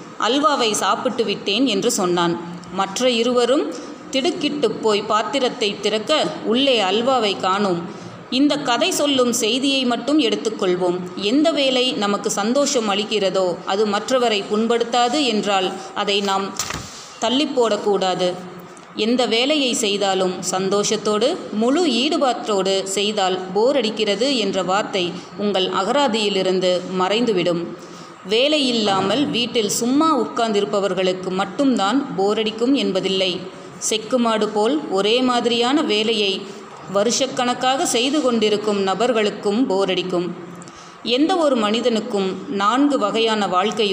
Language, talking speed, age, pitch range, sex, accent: Tamil, 95 wpm, 30-49, 190-245 Hz, female, native